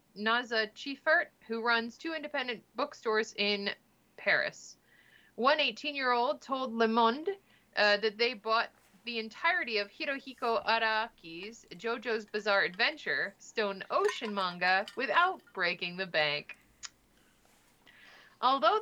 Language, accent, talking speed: English, American, 115 wpm